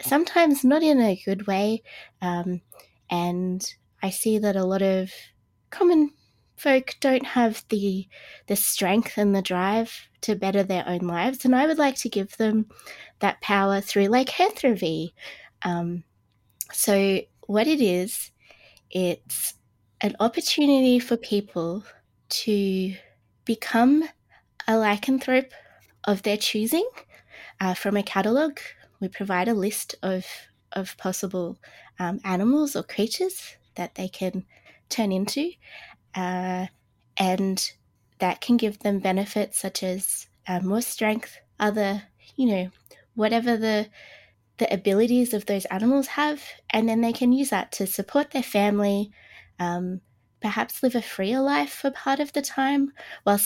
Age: 20-39